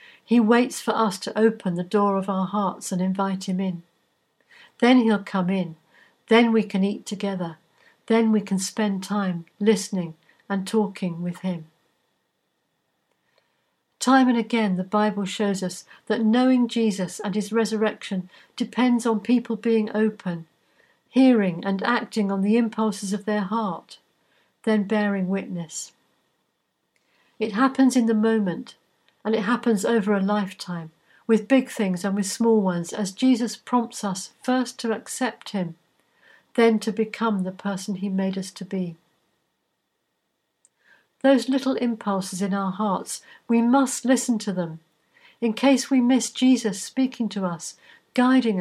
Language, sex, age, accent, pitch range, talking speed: English, female, 60-79, British, 195-235 Hz, 150 wpm